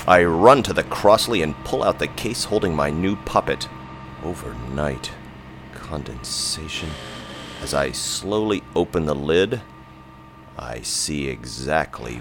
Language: English